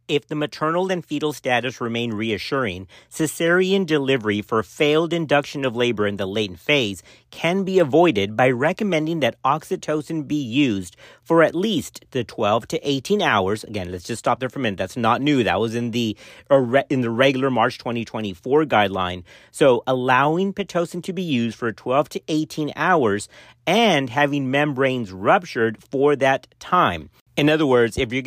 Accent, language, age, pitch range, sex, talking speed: American, English, 40-59, 115-155 Hz, male, 170 wpm